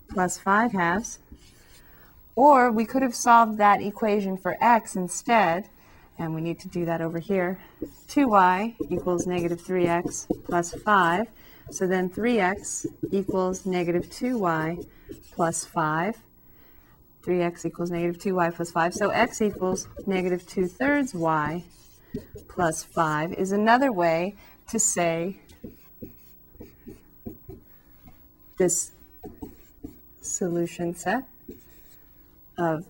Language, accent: English, American